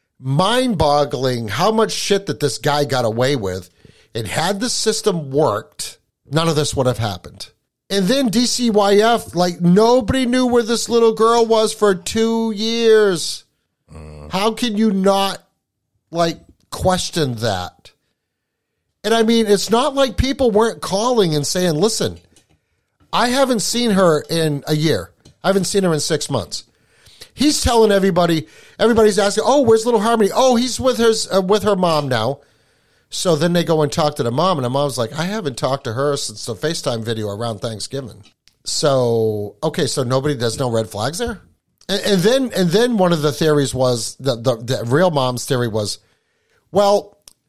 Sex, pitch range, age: male, 130-215 Hz, 50-69